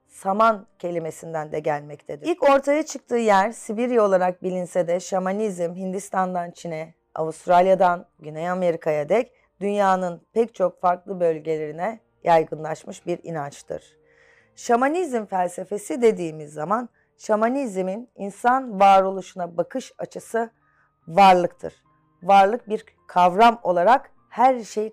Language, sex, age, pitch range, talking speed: Turkish, female, 30-49, 165-215 Hz, 105 wpm